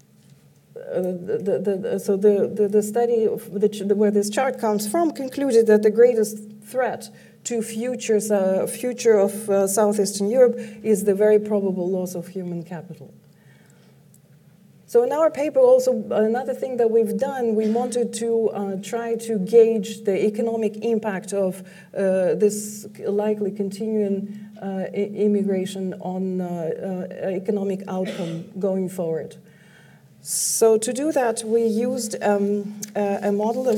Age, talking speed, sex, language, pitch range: 40-59, 135 wpm, female, English, 195-225 Hz